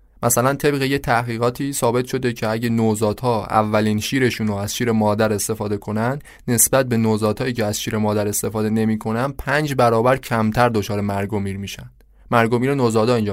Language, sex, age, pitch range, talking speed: Persian, male, 20-39, 110-130 Hz, 160 wpm